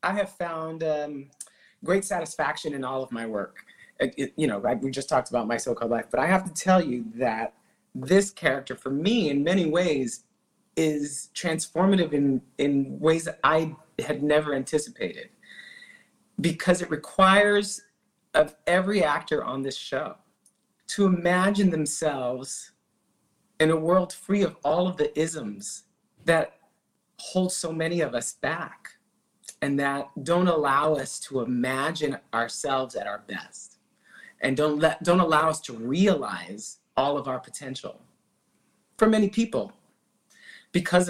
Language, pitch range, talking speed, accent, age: English, 135-185 Hz, 145 wpm, American, 40-59